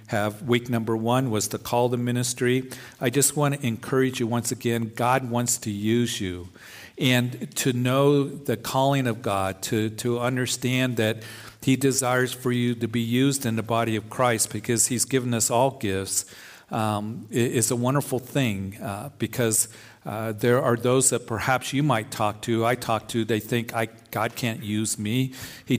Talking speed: 195 wpm